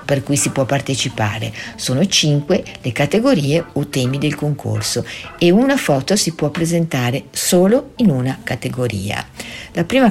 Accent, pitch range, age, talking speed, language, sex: native, 125-175 Hz, 50-69, 150 wpm, Italian, female